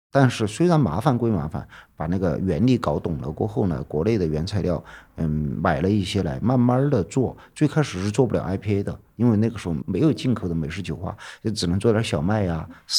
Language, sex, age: Chinese, male, 50-69